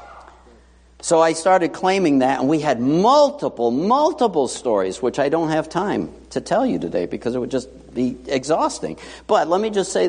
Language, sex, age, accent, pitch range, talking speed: English, male, 60-79, American, 115-190 Hz, 185 wpm